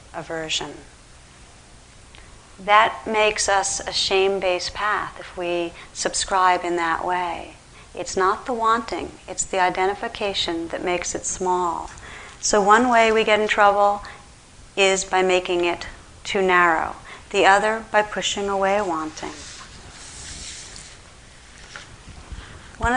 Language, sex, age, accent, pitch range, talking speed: English, female, 40-59, American, 170-205 Hz, 115 wpm